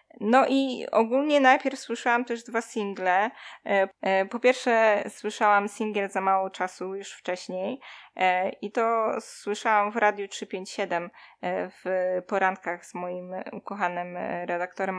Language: Polish